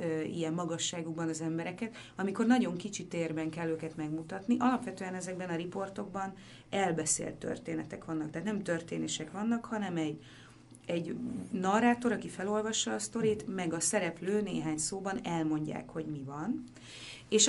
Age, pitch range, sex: 30-49, 160-210 Hz, female